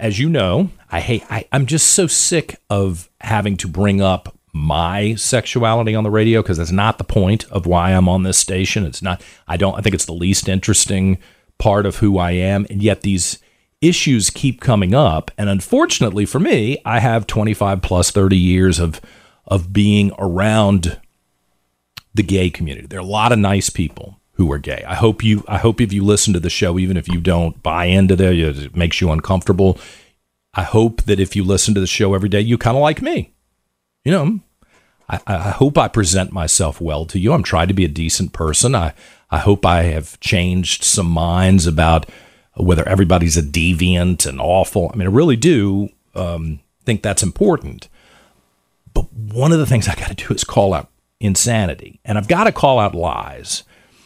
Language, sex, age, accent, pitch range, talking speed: English, male, 40-59, American, 90-110 Hz, 200 wpm